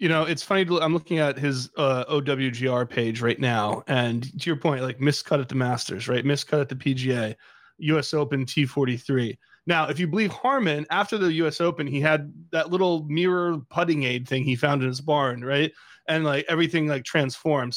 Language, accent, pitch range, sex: English, American, 135-170 Hz, male